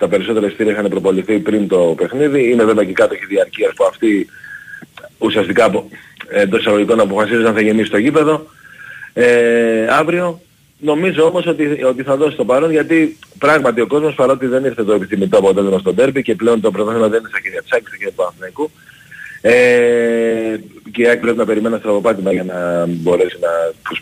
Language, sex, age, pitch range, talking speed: Greek, male, 40-59, 110-170 Hz, 175 wpm